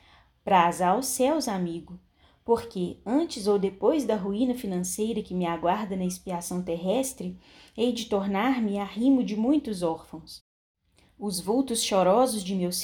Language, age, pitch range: Portuguese, 10-29, 185-245 Hz